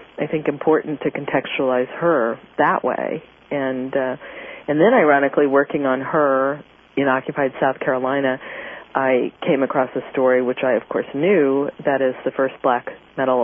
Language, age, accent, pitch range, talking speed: English, 40-59, American, 130-150 Hz, 160 wpm